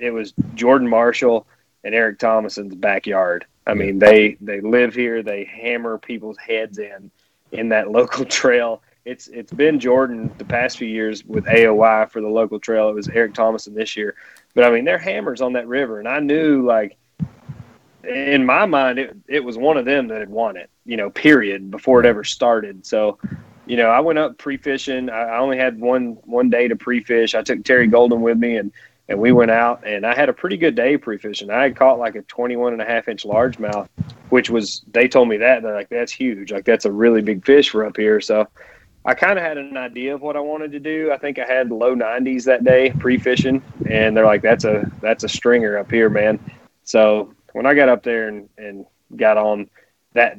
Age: 30-49